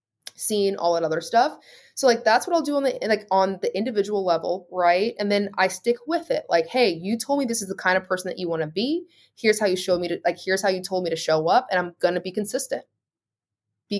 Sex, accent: female, American